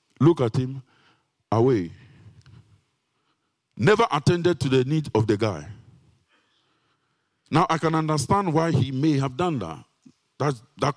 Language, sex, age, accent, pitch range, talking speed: English, male, 50-69, Nigerian, 105-135 Hz, 130 wpm